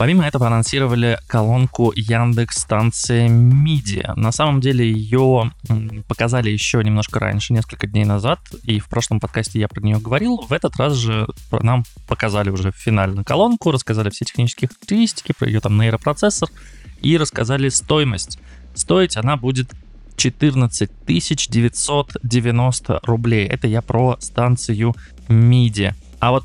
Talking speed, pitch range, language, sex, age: 135 wpm, 110-130 Hz, Russian, male, 20-39